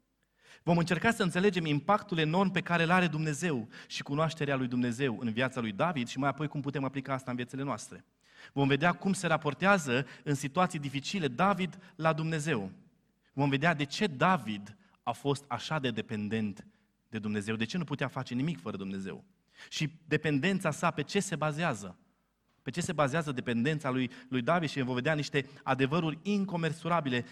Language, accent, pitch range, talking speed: Romanian, native, 125-170 Hz, 175 wpm